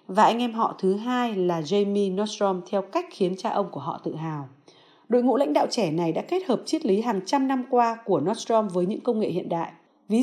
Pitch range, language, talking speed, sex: 180-240 Hz, Vietnamese, 245 wpm, female